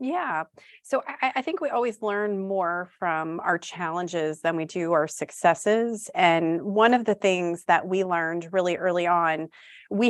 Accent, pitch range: American, 170-215 Hz